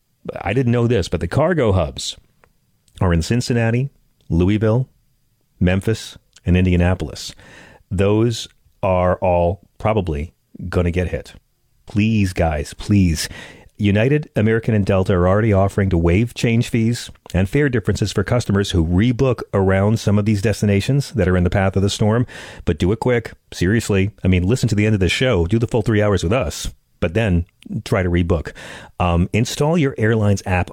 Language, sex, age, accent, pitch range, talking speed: English, male, 40-59, American, 90-115 Hz, 170 wpm